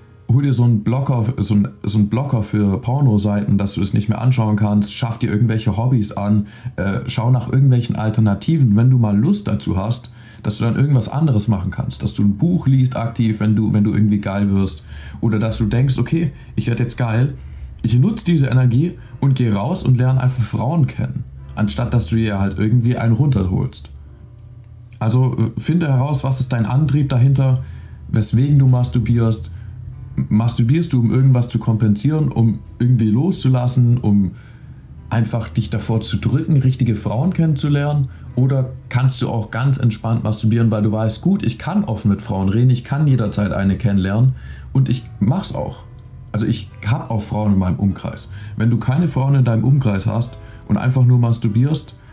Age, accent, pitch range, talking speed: 20-39, German, 105-130 Hz, 175 wpm